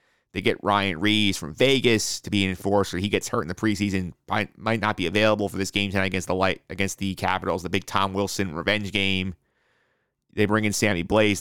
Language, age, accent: English, 30-49, American